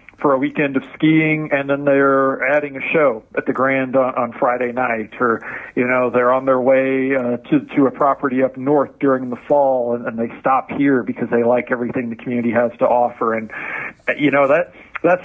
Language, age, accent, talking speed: English, 40-59, American, 215 wpm